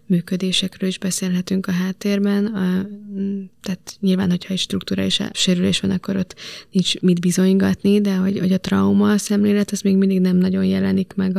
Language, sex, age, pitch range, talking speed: Hungarian, female, 20-39, 185-200 Hz, 175 wpm